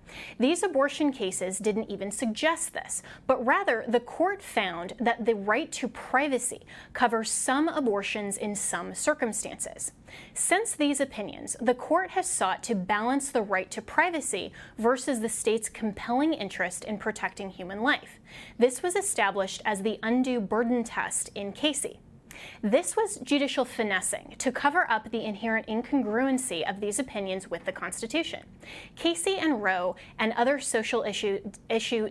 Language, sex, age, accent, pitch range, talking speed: English, female, 20-39, American, 210-280 Hz, 150 wpm